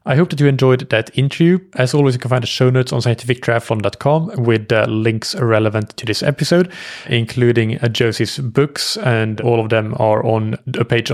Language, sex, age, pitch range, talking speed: English, male, 20-39, 110-130 Hz, 185 wpm